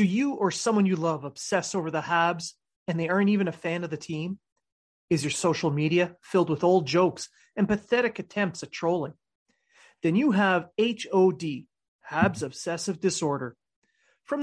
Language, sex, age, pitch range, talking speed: English, male, 30-49, 165-220 Hz, 165 wpm